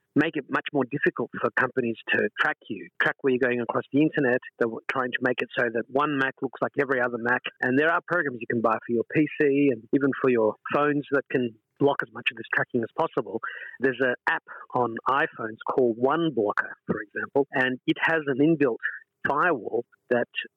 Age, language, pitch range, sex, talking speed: 40-59, English, 120-145 Hz, male, 210 wpm